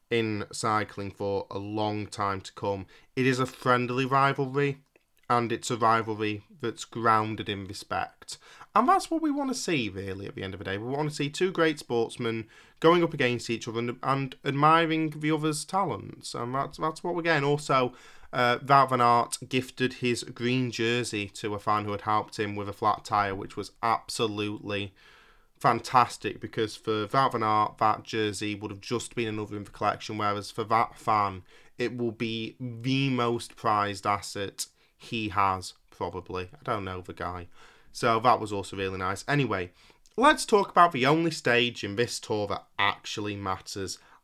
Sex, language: male, English